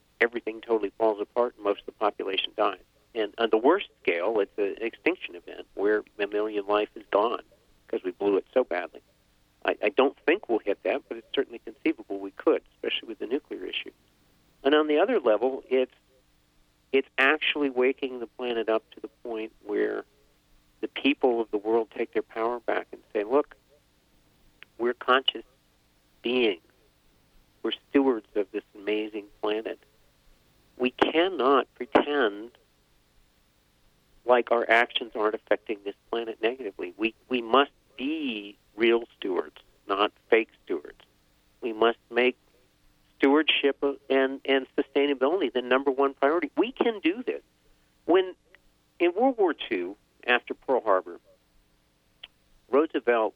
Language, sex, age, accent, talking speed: English, male, 50-69, American, 145 wpm